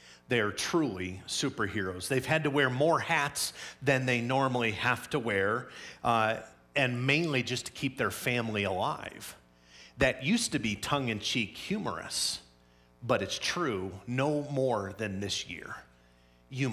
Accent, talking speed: American, 145 wpm